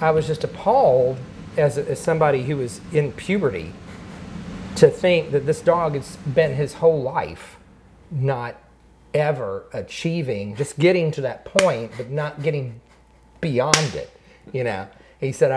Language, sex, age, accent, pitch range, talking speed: English, male, 40-59, American, 115-170 Hz, 150 wpm